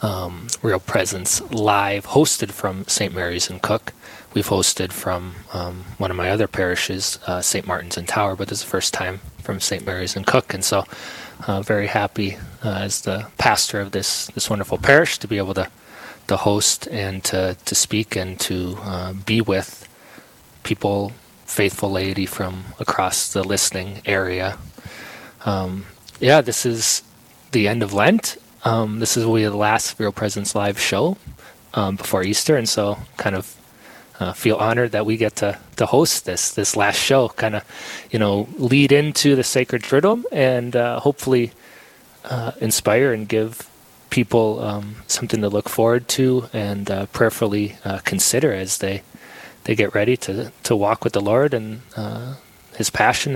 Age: 20-39